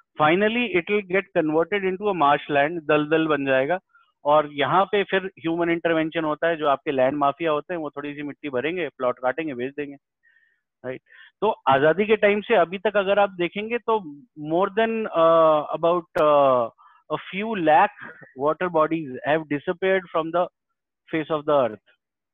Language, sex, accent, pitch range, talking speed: Hindi, male, native, 145-180 Hz, 95 wpm